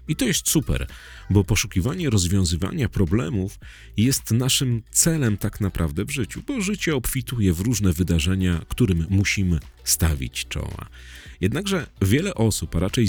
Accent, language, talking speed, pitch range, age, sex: native, Polish, 140 wpm, 85-115 Hz, 40-59, male